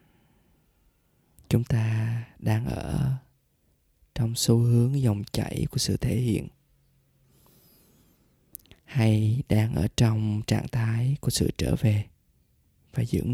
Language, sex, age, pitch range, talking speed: Vietnamese, male, 20-39, 100-125 Hz, 110 wpm